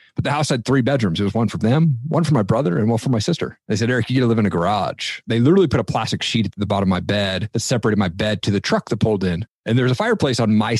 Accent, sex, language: American, male, English